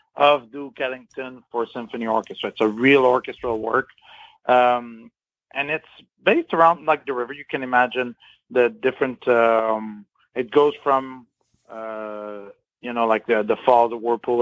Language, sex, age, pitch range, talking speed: English, male, 40-59, 120-155 Hz, 155 wpm